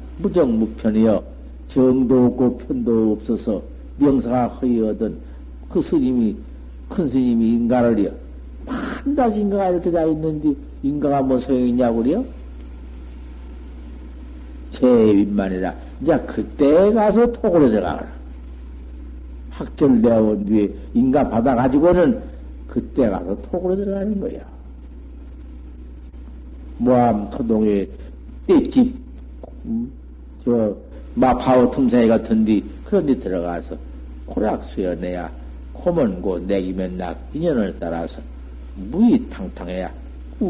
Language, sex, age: Korean, male, 50-69